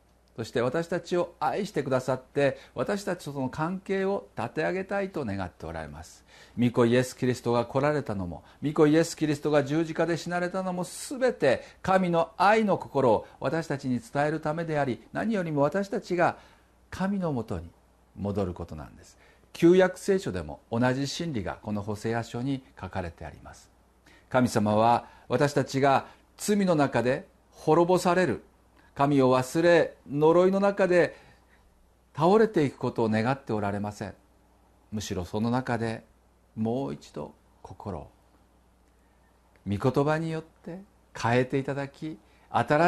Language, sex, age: Japanese, male, 50-69